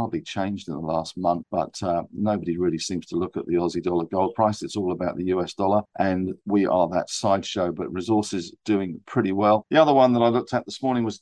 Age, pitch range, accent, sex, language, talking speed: 50-69, 95-110 Hz, British, male, English, 240 wpm